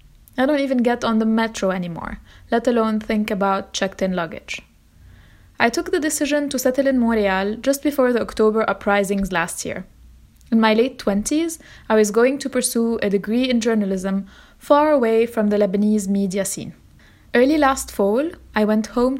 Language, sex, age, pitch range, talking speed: English, female, 20-39, 205-255 Hz, 170 wpm